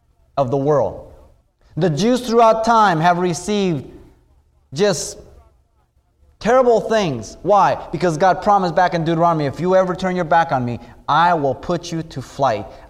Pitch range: 120-190 Hz